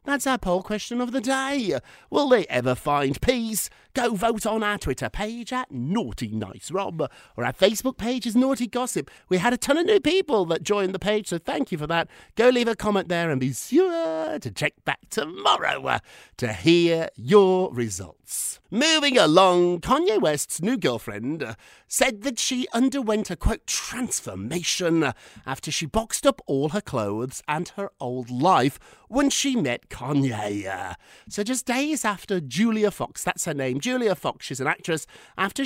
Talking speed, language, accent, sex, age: 175 wpm, English, British, male, 50-69